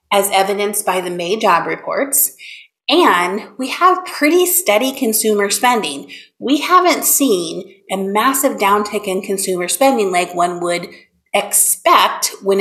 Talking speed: 135 wpm